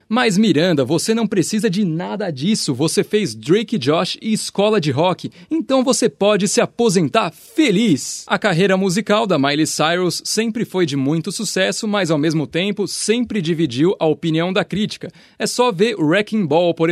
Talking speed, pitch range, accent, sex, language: 175 wpm, 150-210 Hz, Brazilian, male, Portuguese